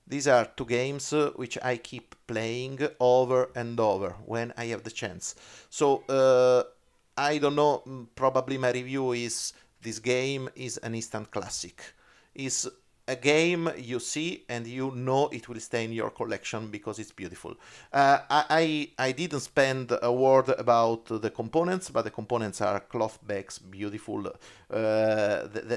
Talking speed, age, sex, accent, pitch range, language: 160 wpm, 40-59, male, Italian, 110-135 Hz, English